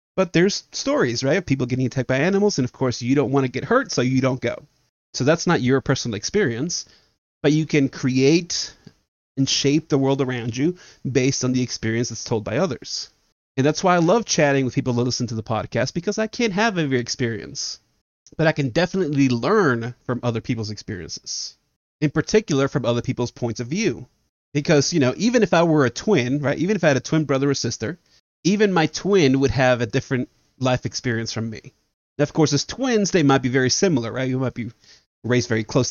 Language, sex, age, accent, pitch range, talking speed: English, male, 30-49, American, 120-155 Hz, 215 wpm